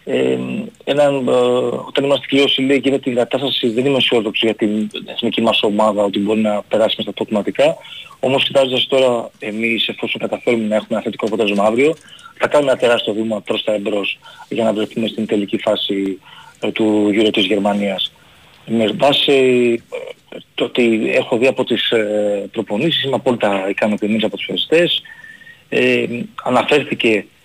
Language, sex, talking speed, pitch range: Greek, male, 165 wpm, 105-125 Hz